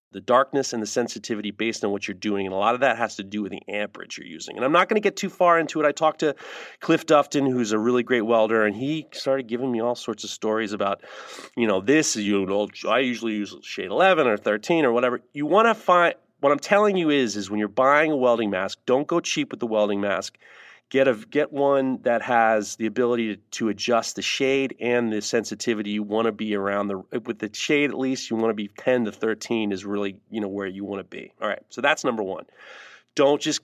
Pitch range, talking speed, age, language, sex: 110-150 Hz, 255 wpm, 30-49, English, male